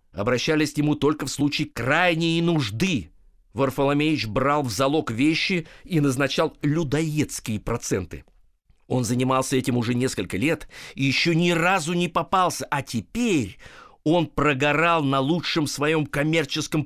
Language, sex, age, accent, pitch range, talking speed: Russian, male, 50-69, native, 140-180 Hz, 130 wpm